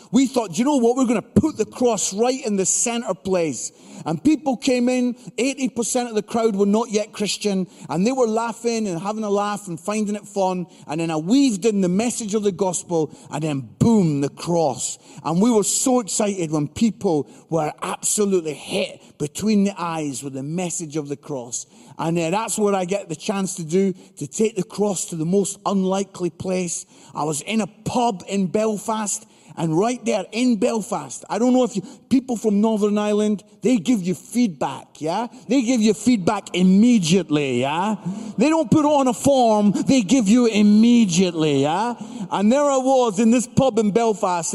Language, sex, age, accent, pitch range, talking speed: English, male, 40-59, British, 175-235 Hz, 195 wpm